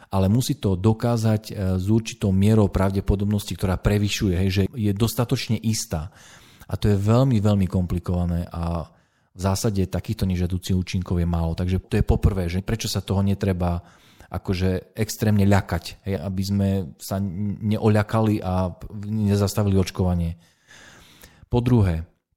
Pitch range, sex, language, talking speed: 90-110 Hz, male, Slovak, 135 wpm